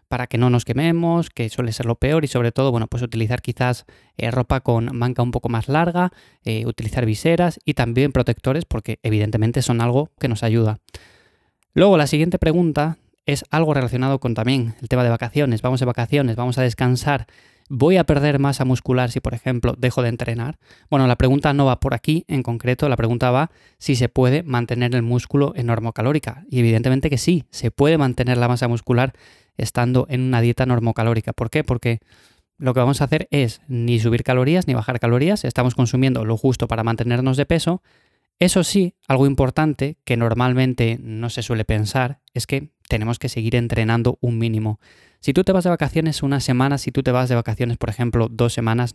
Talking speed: 200 wpm